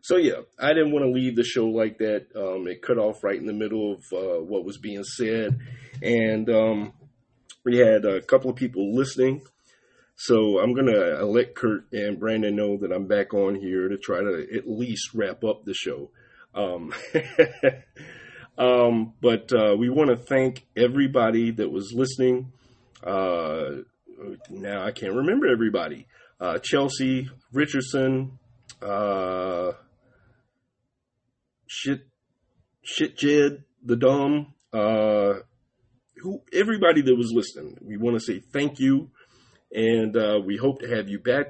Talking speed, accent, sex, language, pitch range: 150 wpm, American, male, English, 110-130 Hz